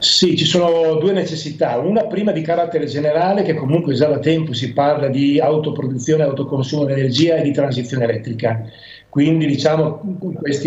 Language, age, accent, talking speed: Italian, 40-59, native, 165 wpm